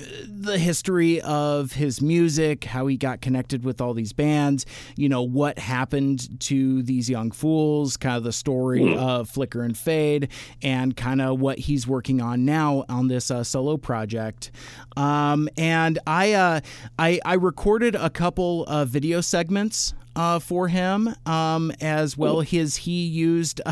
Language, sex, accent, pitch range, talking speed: English, male, American, 135-170 Hz, 160 wpm